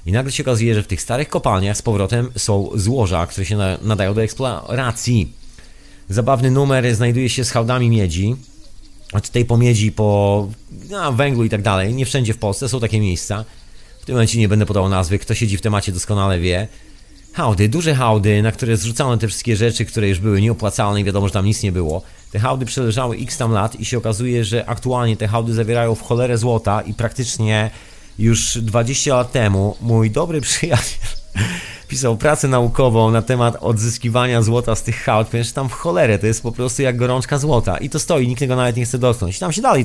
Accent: native